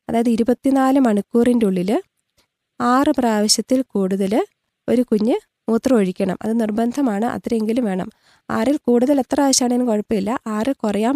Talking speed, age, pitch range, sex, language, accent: 120 wpm, 20-39, 210-250 Hz, female, Malayalam, native